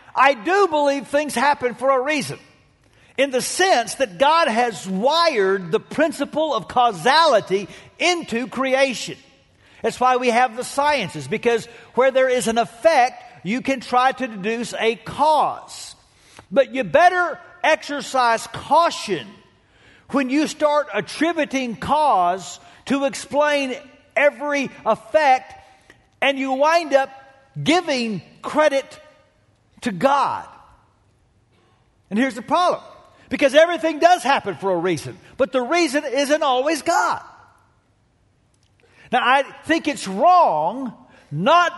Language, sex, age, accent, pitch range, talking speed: English, male, 50-69, American, 235-310 Hz, 120 wpm